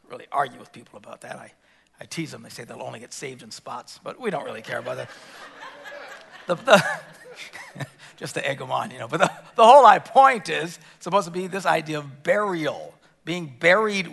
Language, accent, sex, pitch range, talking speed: English, American, male, 150-220 Hz, 210 wpm